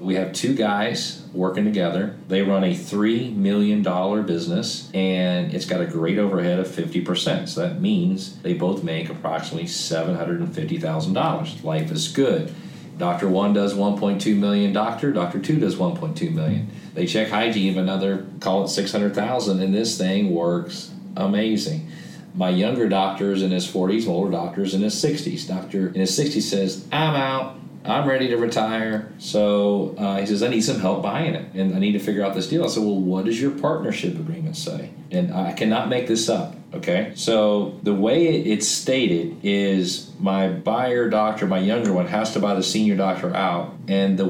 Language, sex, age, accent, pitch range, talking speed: English, male, 40-59, American, 95-140 Hz, 180 wpm